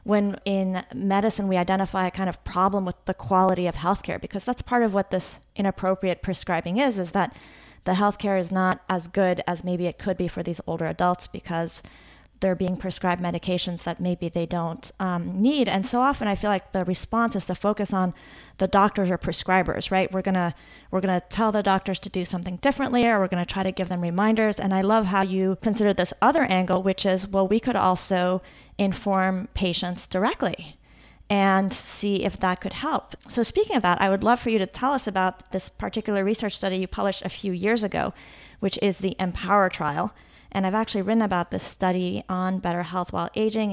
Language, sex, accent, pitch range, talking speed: English, female, American, 180-205 Hz, 205 wpm